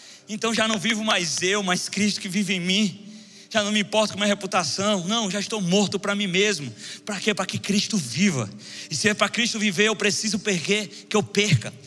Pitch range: 185-255 Hz